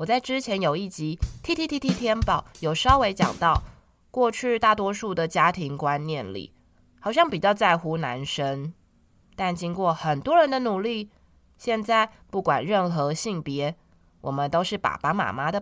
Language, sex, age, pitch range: Chinese, female, 20-39, 140-210 Hz